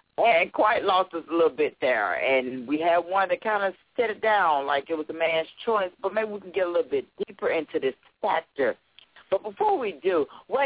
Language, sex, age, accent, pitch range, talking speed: English, female, 40-59, American, 135-190 Hz, 230 wpm